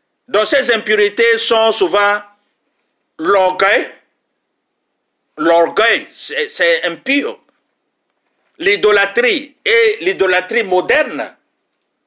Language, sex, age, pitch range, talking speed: French, male, 50-69, 190-310 Hz, 65 wpm